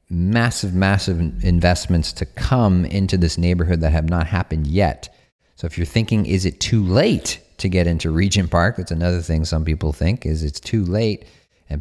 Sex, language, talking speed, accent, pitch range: male, English, 190 wpm, American, 80-95 Hz